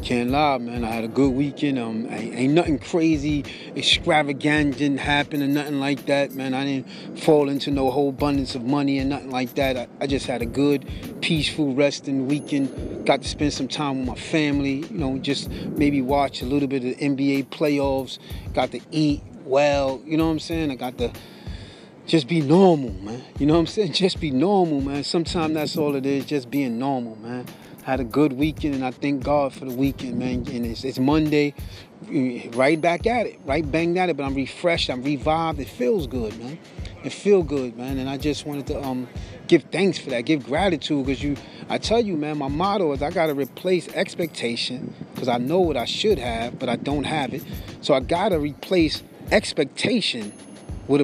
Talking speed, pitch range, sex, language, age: 210 wpm, 135-160 Hz, male, English, 30-49